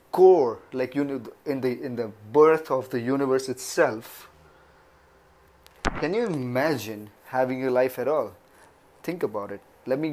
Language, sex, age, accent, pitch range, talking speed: English, male, 30-49, Indian, 120-150 Hz, 150 wpm